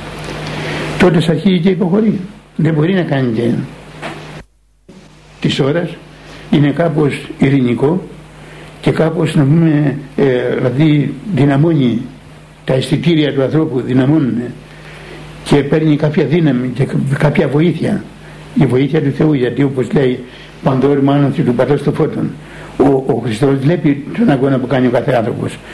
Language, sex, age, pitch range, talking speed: Greek, male, 60-79, 130-160 Hz, 130 wpm